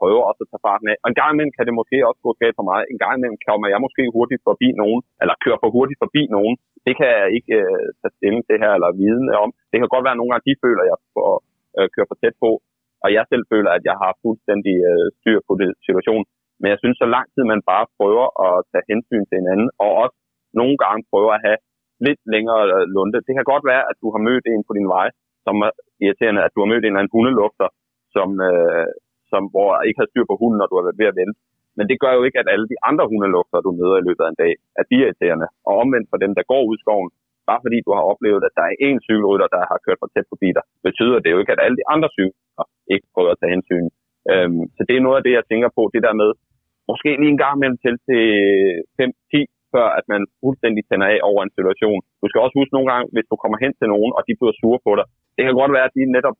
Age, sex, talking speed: 30-49, male, 260 wpm